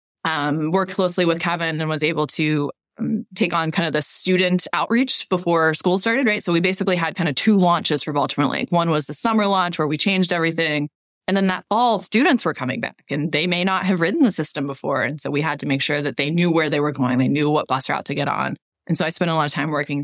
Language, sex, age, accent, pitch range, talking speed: English, female, 20-39, American, 155-195 Hz, 265 wpm